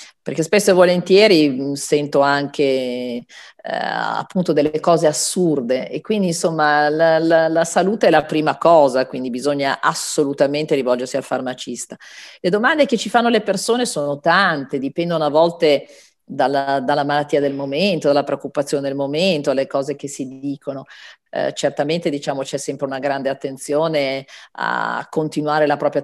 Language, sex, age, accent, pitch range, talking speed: Italian, female, 40-59, native, 135-165 Hz, 150 wpm